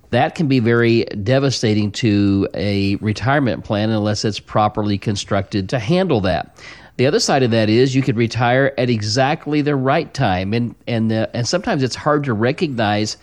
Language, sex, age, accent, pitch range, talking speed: English, male, 40-59, American, 110-135 Hz, 175 wpm